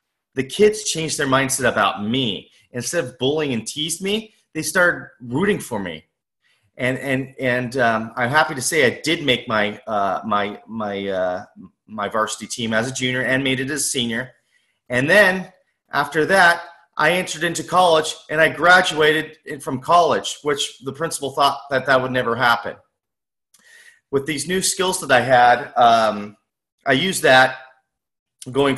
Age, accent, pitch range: 30-49, American, 120-155 Hz